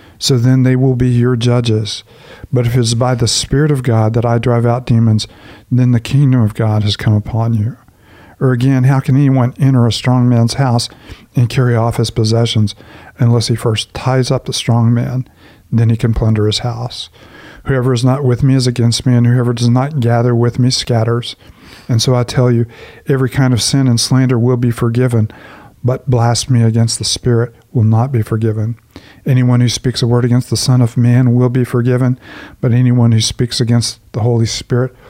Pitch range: 115-125 Hz